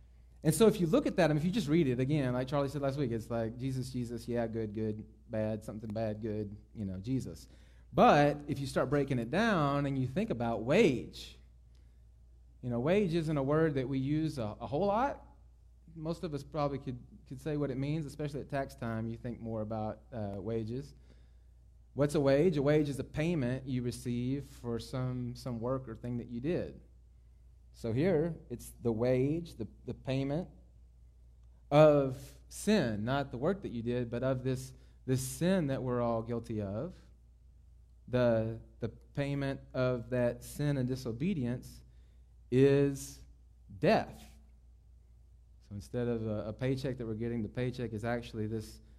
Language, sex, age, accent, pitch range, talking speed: English, male, 30-49, American, 100-140 Hz, 185 wpm